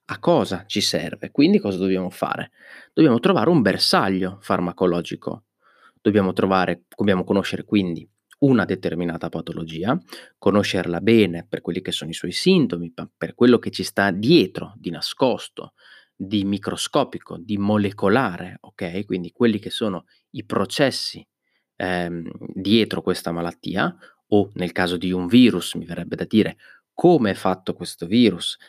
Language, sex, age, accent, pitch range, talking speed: Italian, male, 30-49, native, 90-105 Hz, 140 wpm